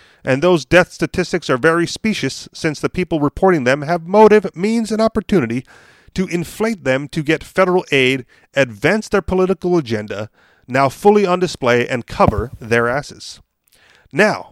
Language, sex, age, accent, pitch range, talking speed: English, male, 40-59, American, 135-185 Hz, 155 wpm